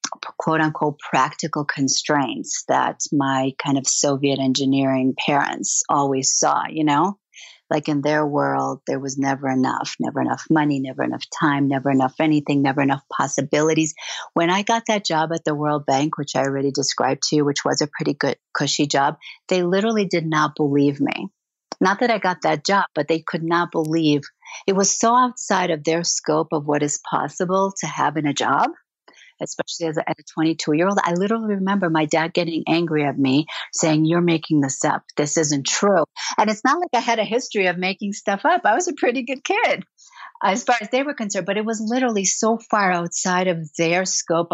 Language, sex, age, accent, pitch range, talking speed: English, female, 50-69, American, 150-195 Hz, 195 wpm